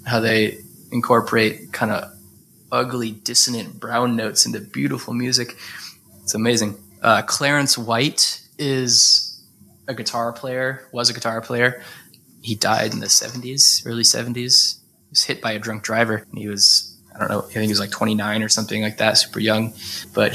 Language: English